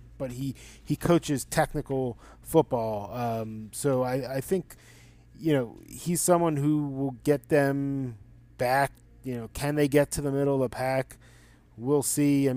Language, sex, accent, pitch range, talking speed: English, male, American, 125-150 Hz, 160 wpm